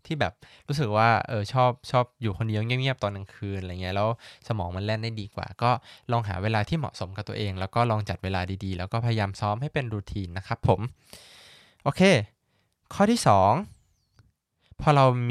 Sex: male